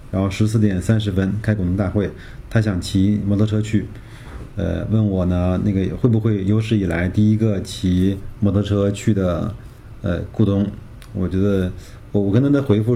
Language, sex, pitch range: Chinese, male, 100-120 Hz